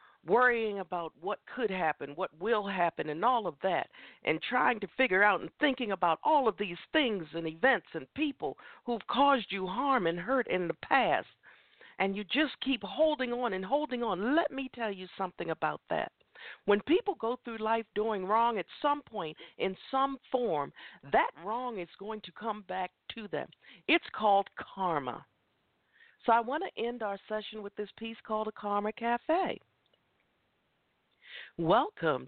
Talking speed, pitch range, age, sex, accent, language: 175 wpm, 155-230 Hz, 50-69, female, American, English